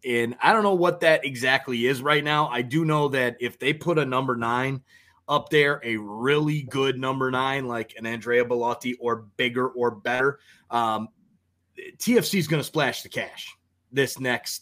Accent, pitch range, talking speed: American, 120-145 Hz, 180 wpm